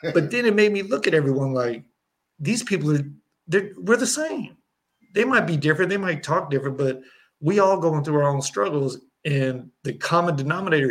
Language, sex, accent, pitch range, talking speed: English, male, American, 120-145 Hz, 200 wpm